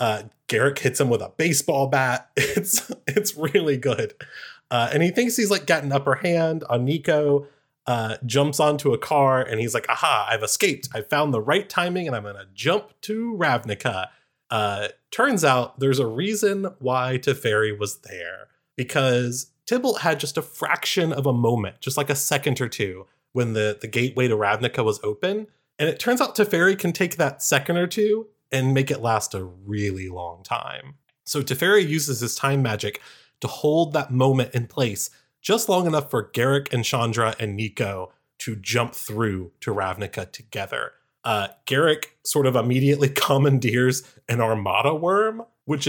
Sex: male